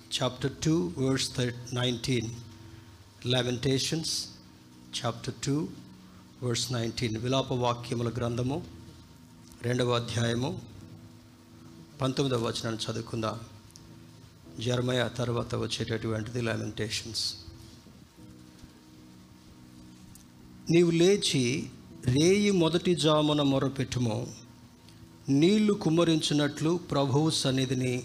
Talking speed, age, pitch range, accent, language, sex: 70 wpm, 50-69, 115-140 Hz, native, Telugu, male